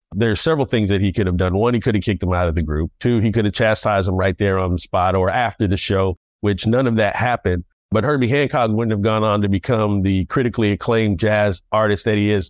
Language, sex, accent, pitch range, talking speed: English, male, American, 95-120 Hz, 270 wpm